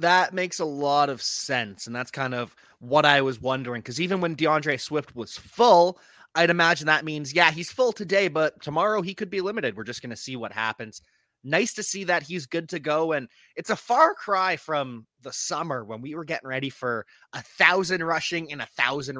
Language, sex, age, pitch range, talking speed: English, male, 20-39, 130-185 Hz, 220 wpm